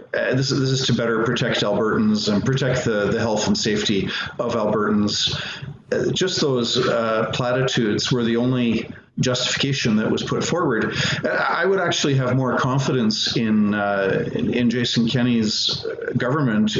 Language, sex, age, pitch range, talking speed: English, male, 50-69, 110-135 Hz, 150 wpm